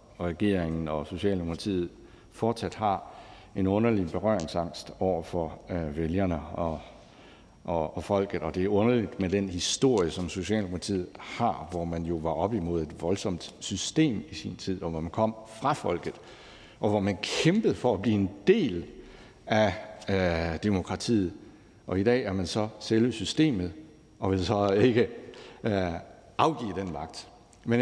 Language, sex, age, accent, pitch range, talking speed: Danish, male, 60-79, native, 90-115 Hz, 160 wpm